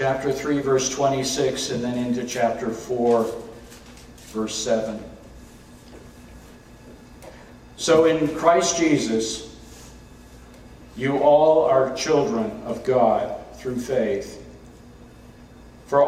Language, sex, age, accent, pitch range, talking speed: English, male, 50-69, American, 125-155 Hz, 90 wpm